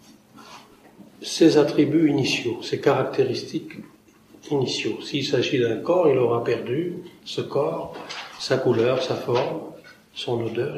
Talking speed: 115 wpm